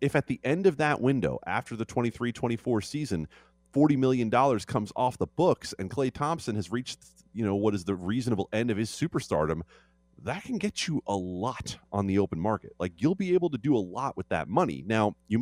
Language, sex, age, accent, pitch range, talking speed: English, male, 30-49, American, 90-130 Hz, 220 wpm